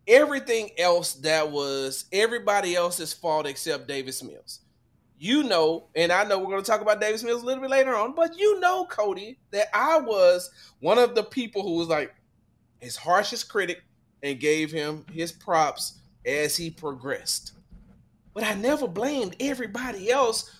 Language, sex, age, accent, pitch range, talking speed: English, male, 30-49, American, 150-235 Hz, 170 wpm